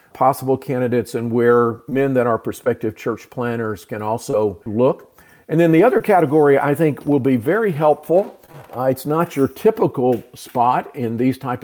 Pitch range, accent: 115-145 Hz, American